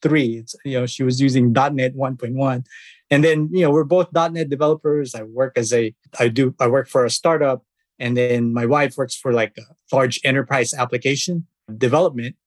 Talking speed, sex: 190 wpm, male